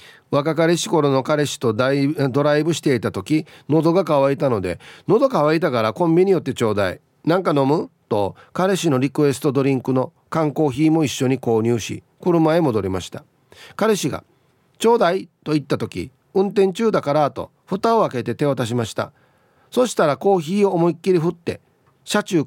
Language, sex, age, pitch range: Japanese, male, 40-59, 130-180 Hz